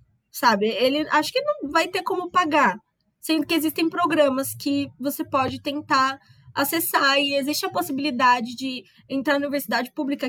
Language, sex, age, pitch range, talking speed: Portuguese, female, 10-29, 235-295 Hz, 155 wpm